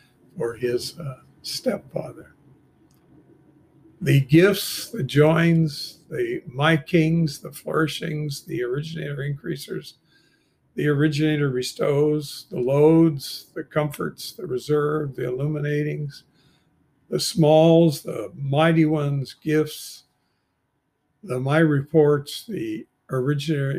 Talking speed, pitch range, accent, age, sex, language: 95 wpm, 135-160 Hz, American, 50-69, male, English